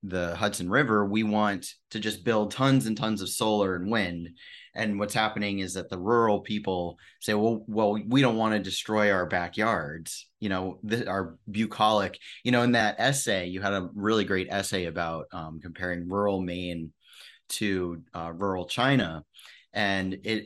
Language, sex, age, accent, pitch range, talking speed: English, male, 30-49, American, 90-110 Hz, 170 wpm